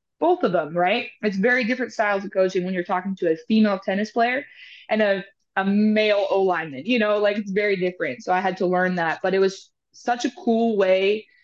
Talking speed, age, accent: 220 wpm, 20-39, American